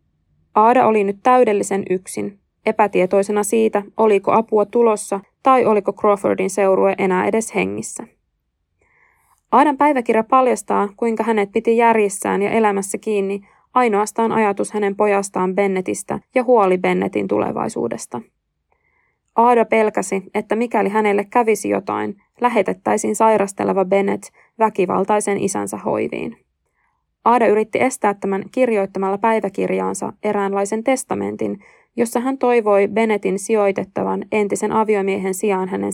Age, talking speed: 20-39, 110 wpm